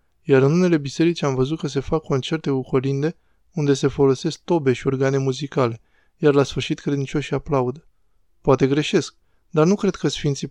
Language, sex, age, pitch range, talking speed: Romanian, male, 20-39, 125-150 Hz, 175 wpm